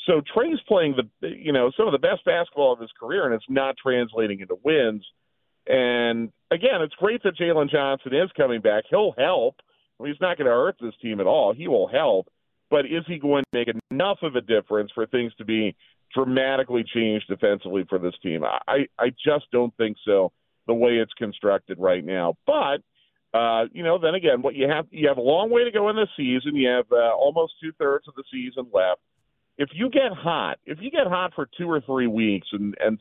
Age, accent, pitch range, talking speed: 40-59, American, 110-150 Hz, 220 wpm